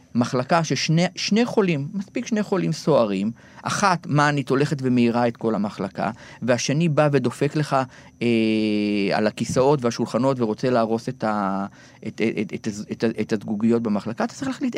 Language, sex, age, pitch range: Hebrew, male, 40-59, 120-175 Hz